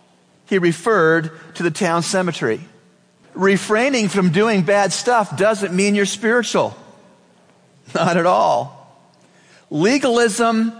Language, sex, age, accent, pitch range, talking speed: English, male, 40-59, American, 155-200 Hz, 105 wpm